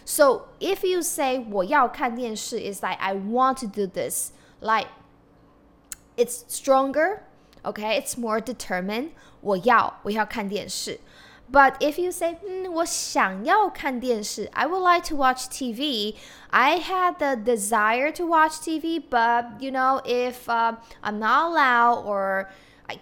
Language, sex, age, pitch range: Chinese, female, 10-29, 210-290 Hz